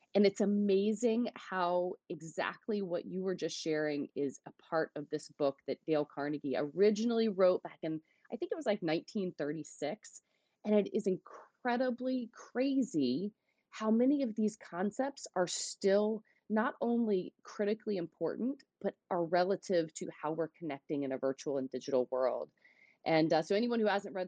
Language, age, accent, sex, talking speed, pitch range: English, 30-49, American, female, 160 wpm, 150-205 Hz